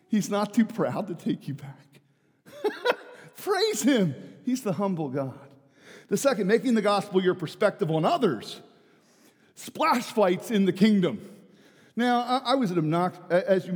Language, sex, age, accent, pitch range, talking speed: English, male, 50-69, American, 140-205 Hz, 155 wpm